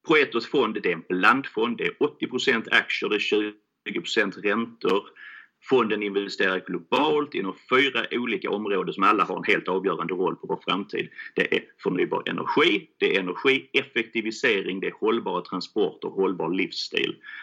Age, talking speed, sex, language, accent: 30-49, 150 wpm, male, Swedish, native